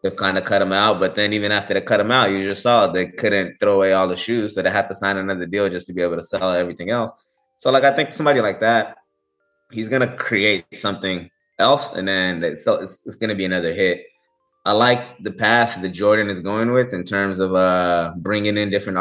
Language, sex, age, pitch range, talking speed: Swahili, male, 20-39, 90-105 Hz, 250 wpm